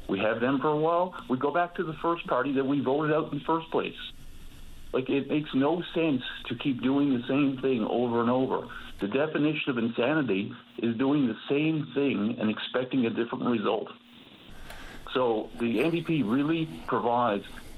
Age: 50-69